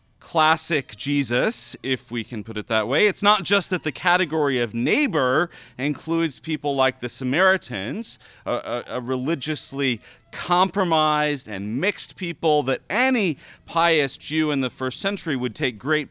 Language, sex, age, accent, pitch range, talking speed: English, male, 40-59, American, 125-165 Hz, 155 wpm